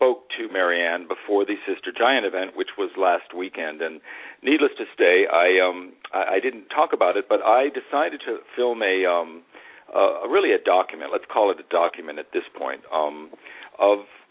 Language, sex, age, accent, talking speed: English, male, 50-69, American, 190 wpm